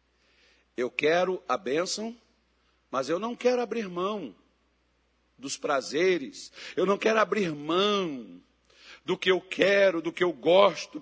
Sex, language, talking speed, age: male, Portuguese, 135 wpm, 60-79